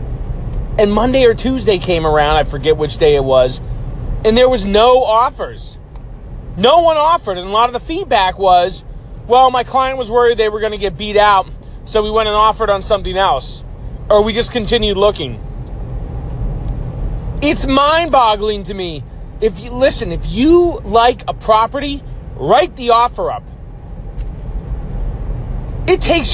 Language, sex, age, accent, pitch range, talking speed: English, male, 30-49, American, 175-250 Hz, 160 wpm